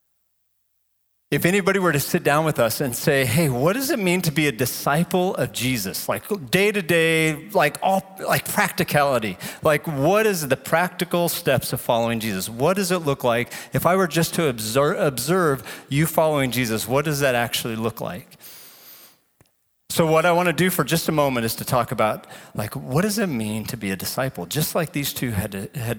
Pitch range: 130-175 Hz